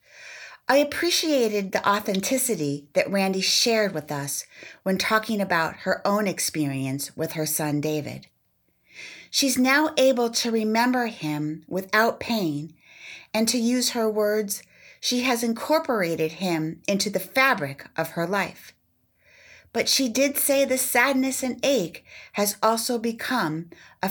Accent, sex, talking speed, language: American, female, 135 wpm, English